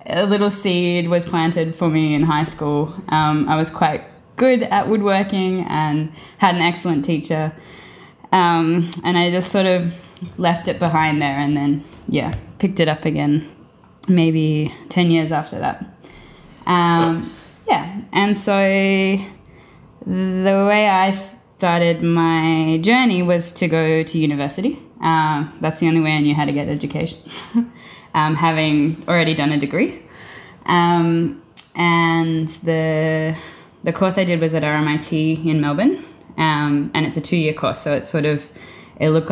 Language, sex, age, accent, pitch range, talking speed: English, female, 10-29, Australian, 155-180 Hz, 155 wpm